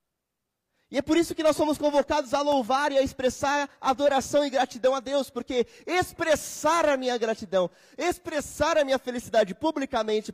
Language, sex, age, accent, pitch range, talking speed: Portuguese, male, 20-39, Brazilian, 200-285 Hz, 165 wpm